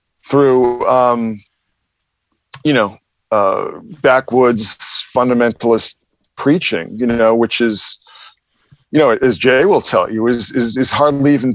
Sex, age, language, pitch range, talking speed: male, 50-69, English, 105-135 Hz, 125 wpm